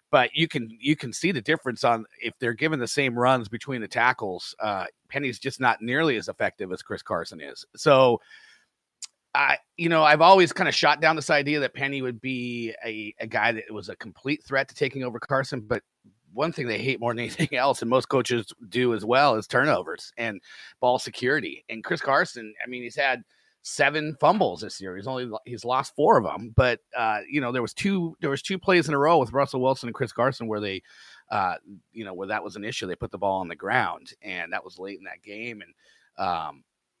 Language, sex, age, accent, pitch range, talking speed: English, male, 30-49, American, 115-145 Hz, 230 wpm